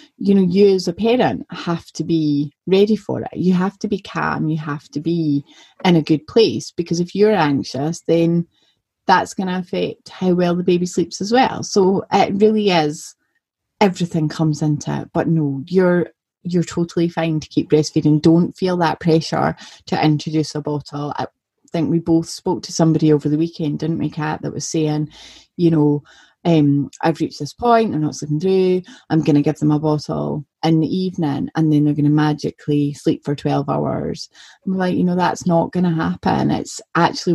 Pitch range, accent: 150-185 Hz, British